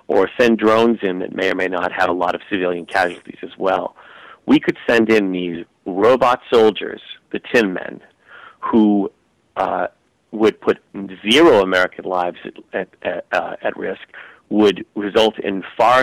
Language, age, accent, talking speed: English, 40-59, American, 160 wpm